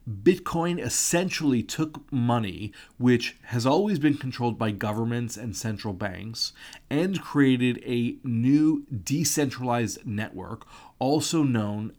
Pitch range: 115-145 Hz